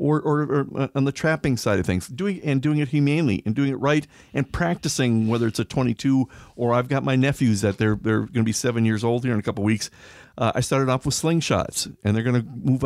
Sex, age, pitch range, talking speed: male, 50-69, 110-140 Hz, 255 wpm